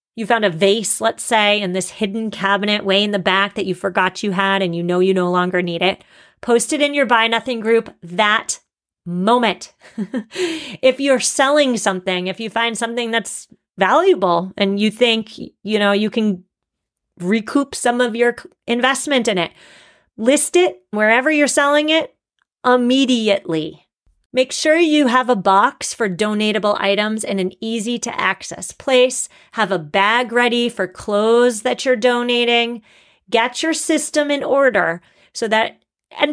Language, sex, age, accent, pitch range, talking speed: English, female, 30-49, American, 195-255 Hz, 165 wpm